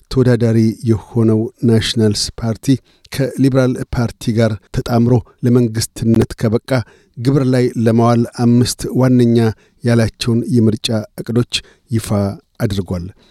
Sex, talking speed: male, 95 wpm